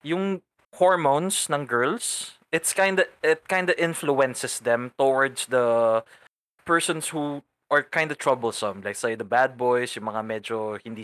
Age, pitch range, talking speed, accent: 20-39, 130-175 Hz, 160 wpm, Filipino